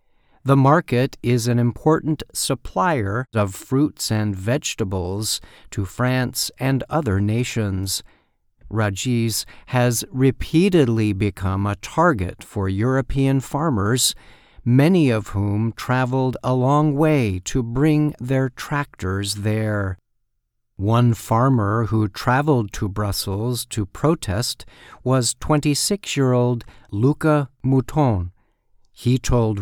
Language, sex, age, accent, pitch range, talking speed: English, male, 50-69, American, 105-135 Hz, 100 wpm